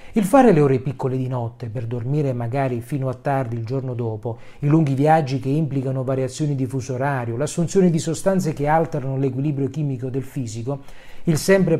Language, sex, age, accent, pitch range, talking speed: Italian, male, 40-59, native, 130-180 Hz, 185 wpm